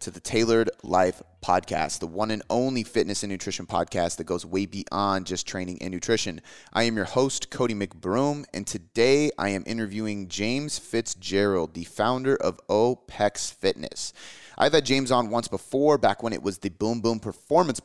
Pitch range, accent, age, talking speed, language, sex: 90-115 Hz, American, 30-49, 180 wpm, English, male